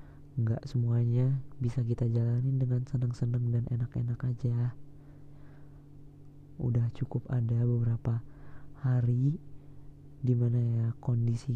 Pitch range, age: 120-140 Hz, 20-39